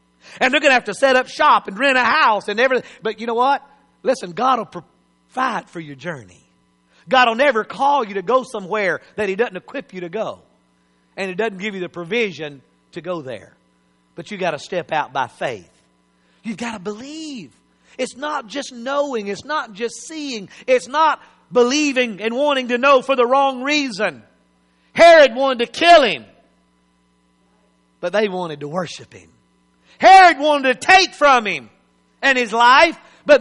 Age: 50-69